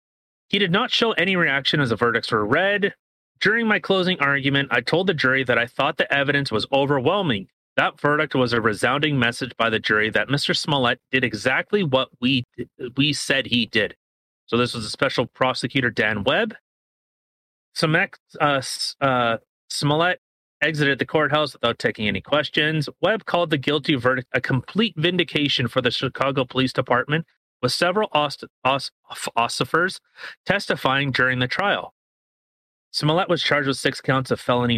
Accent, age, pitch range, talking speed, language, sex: American, 30-49, 125-160 Hz, 165 wpm, English, male